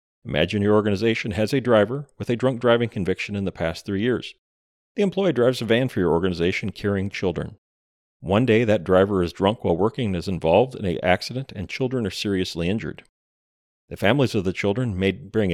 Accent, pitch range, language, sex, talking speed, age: American, 90-120 Hz, English, male, 200 wpm, 40-59